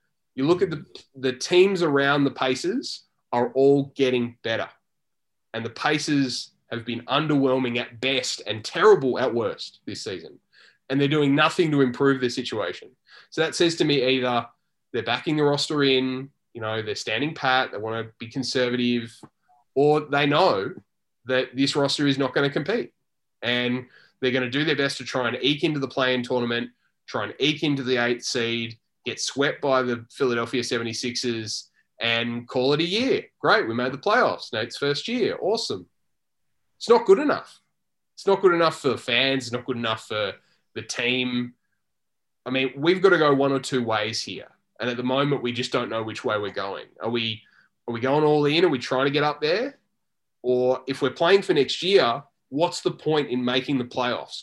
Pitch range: 120-145 Hz